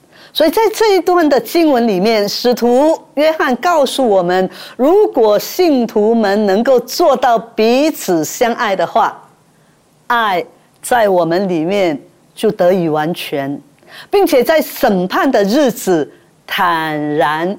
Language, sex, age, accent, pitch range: Chinese, female, 50-69, American, 205-330 Hz